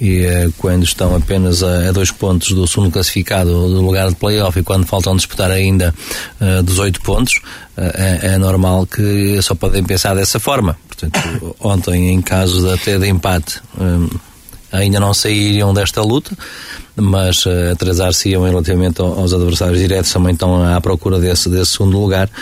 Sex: male